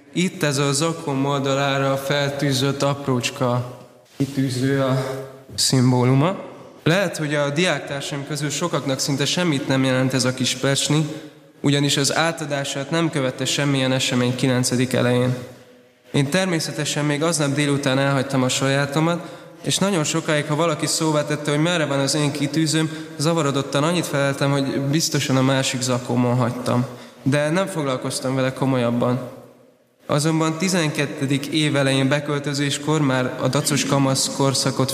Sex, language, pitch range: male, Hungarian, 130-150 Hz